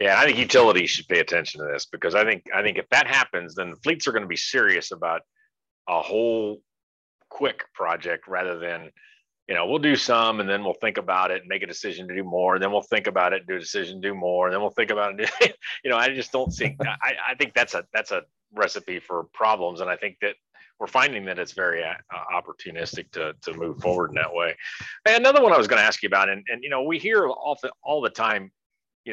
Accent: American